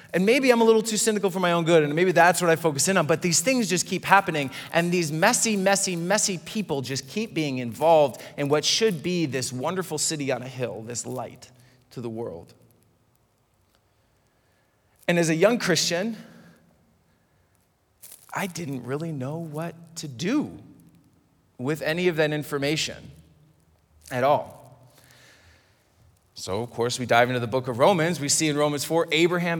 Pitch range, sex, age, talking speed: 120-170 Hz, male, 30-49, 170 wpm